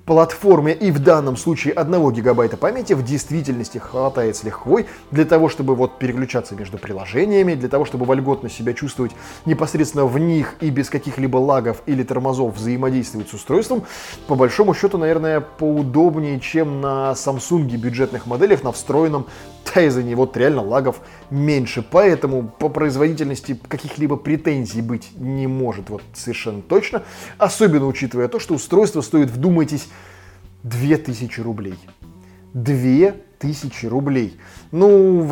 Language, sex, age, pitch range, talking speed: Russian, male, 20-39, 120-155 Hz, 135 wpm